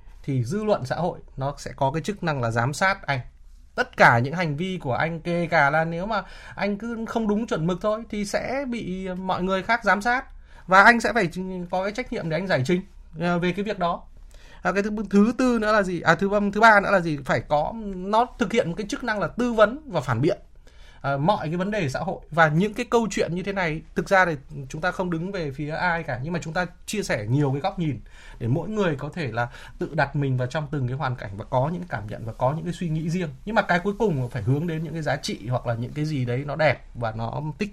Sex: male